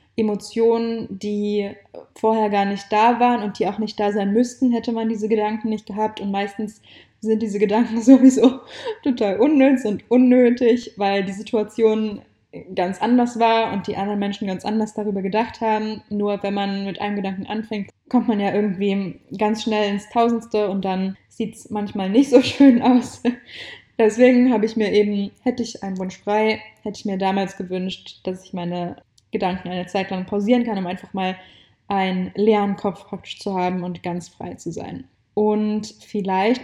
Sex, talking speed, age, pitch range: female, 175 wpm, 20-39, 195-225 Hz